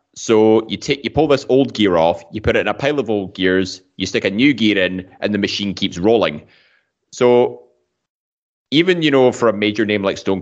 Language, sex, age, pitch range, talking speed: English, male, 20-39, 95-110 Hz, 225 wpm